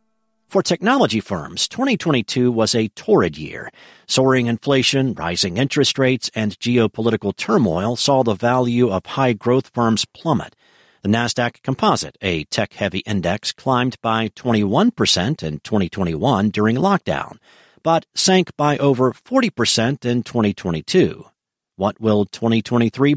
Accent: American